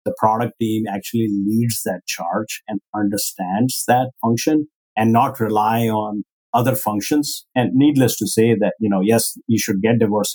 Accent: Indian